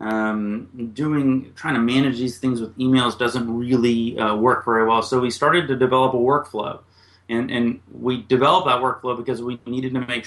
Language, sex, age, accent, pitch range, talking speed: English, male, 30-49, American, 110-130 Hz, 195 wpm